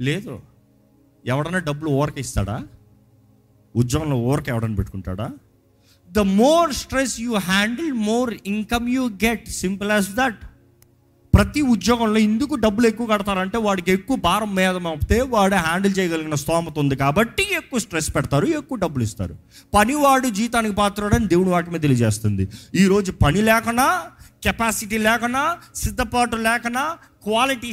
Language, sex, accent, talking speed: Telugu, male, native, 125 wpm